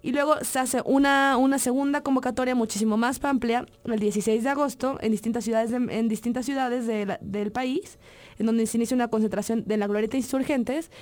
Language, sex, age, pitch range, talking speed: English, female, 20-39, 210-245 Hz, 195 wpm